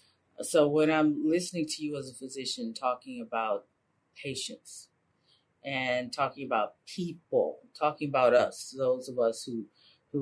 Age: 40-59